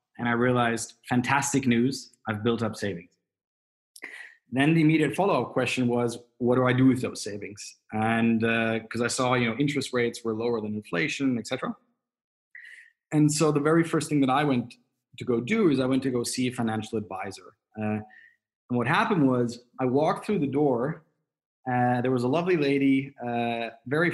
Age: 20-39